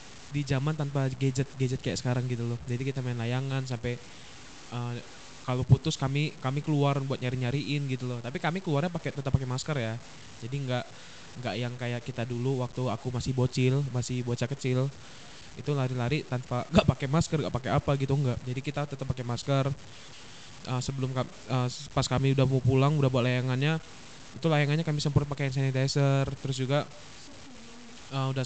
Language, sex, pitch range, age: Indonesian, male, 125-145 Hz, 20-39